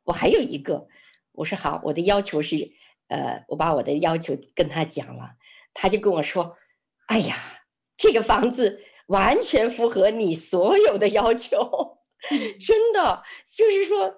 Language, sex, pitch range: Chinese, female, 175-280 Hz